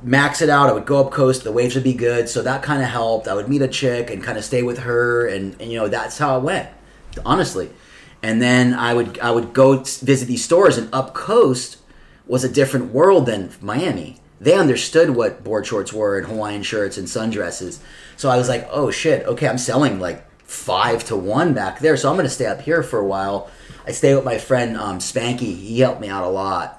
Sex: male